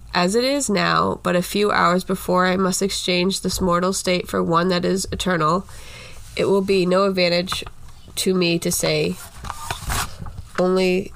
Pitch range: 175-195 Hz